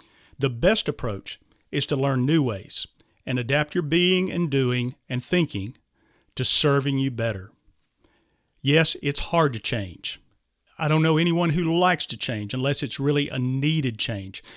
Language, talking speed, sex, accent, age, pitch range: English, 160 wpm, male, American, 40-59, 125-165 Hz